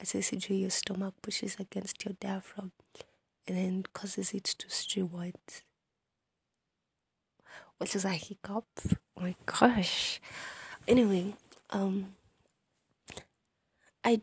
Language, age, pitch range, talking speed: English, 20-39, 175-200 Hz, 95 wpm